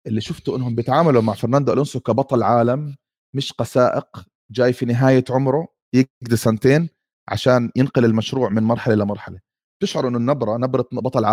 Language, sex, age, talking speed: Arabic, male, 30-49, 150 wpm